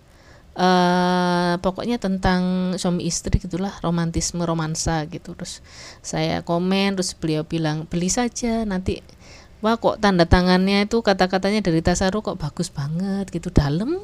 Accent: native